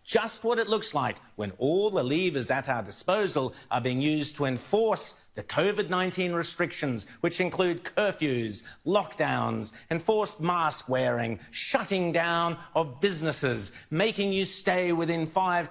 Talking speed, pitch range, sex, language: 140 wpm, 130-190 Hz, male, English